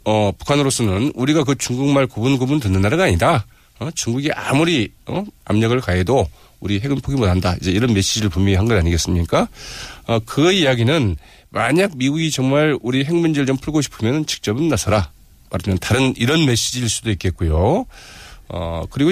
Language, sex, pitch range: Korean, male, 95-150 Hz